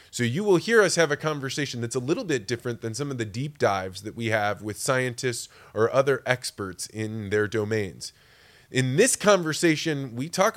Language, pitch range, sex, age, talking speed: English, 115-145 Hz, male, 20-39, 200 wpm